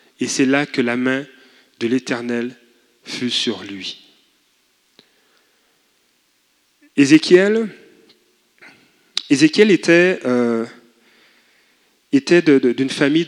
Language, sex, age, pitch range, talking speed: French, male, 30-49, 125-160 Hz, 90 wpm